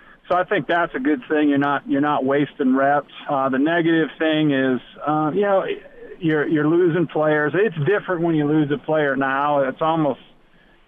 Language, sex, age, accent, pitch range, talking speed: English, male, 40-59, American, 140-160 Hz, 195 wpm